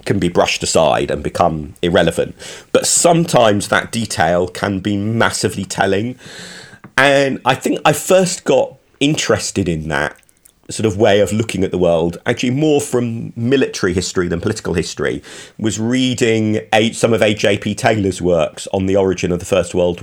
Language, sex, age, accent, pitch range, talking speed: English, male, 40-59, British, 90-115 Hz, 160 wpm